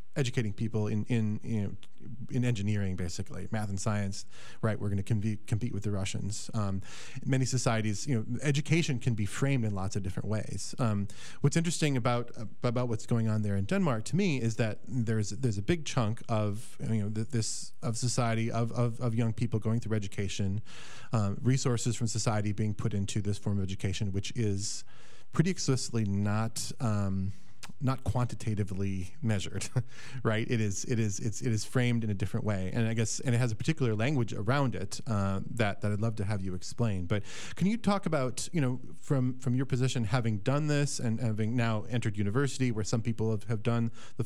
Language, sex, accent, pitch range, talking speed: English, male, American, 105-125 Hz, 200 wpm